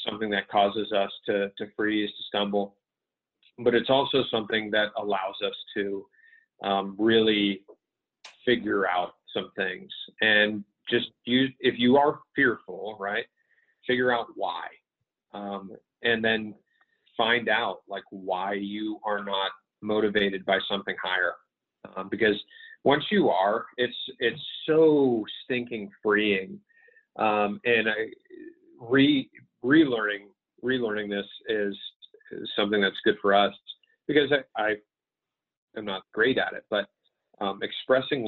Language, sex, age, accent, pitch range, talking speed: English, male, 30-49, American, 100-135 Hz, 130 wpm